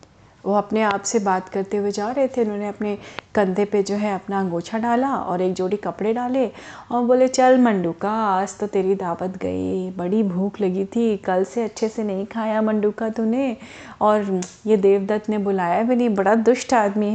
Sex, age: female, 30-49